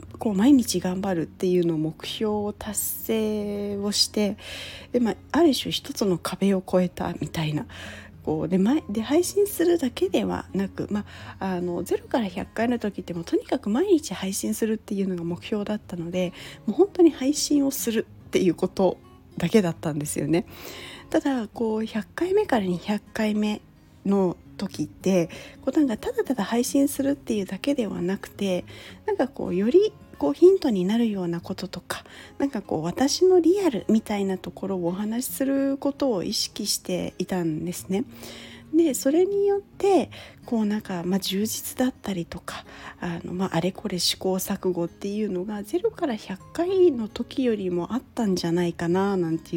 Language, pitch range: Japanese, 180-270 Hz